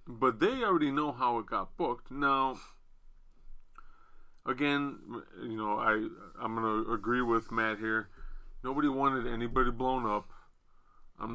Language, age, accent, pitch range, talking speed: English, 30-49, American, 110-150 Hz, 130 wpm